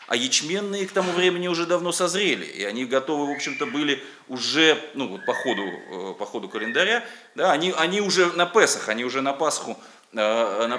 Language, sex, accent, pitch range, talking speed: Russian, male, native, 120-170 Hz, 185 wpm